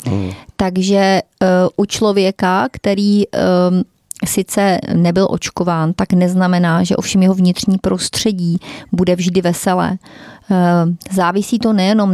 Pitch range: 175-195 Hz